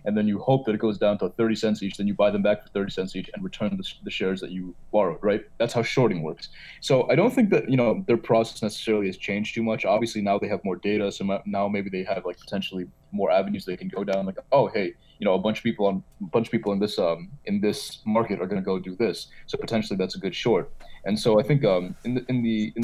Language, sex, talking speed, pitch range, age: English, male, 290 wpm, 100-115 Hz, 20-39